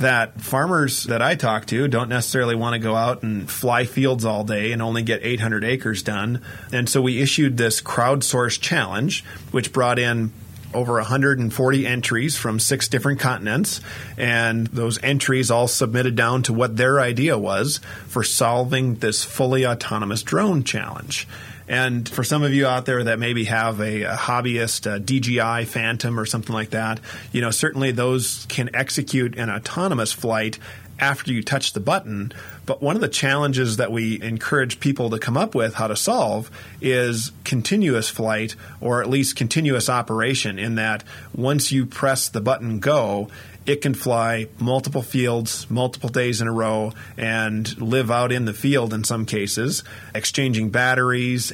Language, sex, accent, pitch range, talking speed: English, male, American, 110-130 Hz, 170 wpm